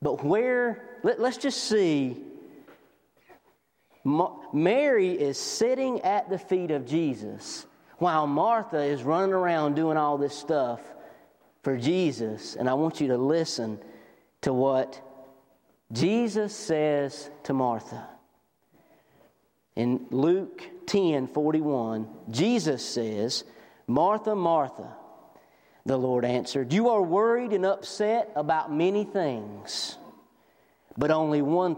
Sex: male